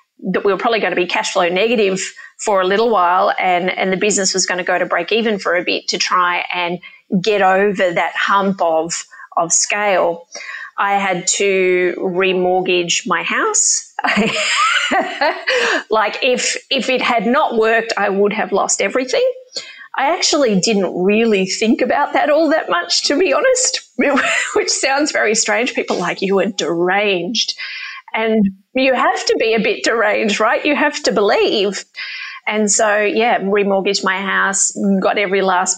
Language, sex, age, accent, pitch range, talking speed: English, female, 30-49, Australian, 180-230 Hz, 170 wpm